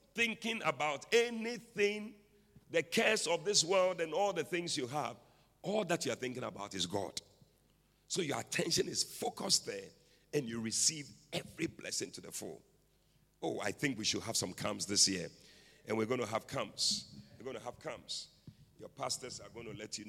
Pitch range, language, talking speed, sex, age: 110-170 Hz, English, 190 wpm, male, 40-59